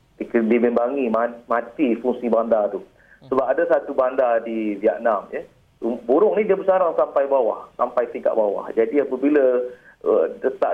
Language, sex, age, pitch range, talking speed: Malay, male, 40-59, 110-135 Hz, 150 wpm